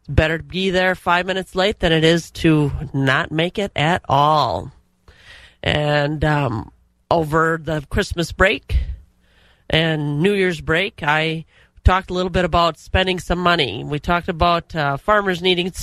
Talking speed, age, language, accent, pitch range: 160 wpm, 40-59, English, American, 150-180 Hz